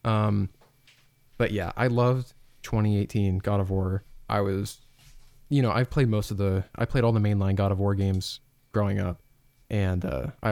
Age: 20-39